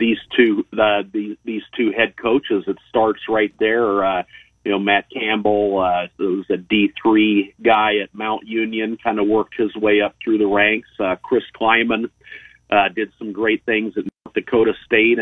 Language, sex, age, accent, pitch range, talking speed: English, male, 40-59, American, 105-115 Hz, 185 wpm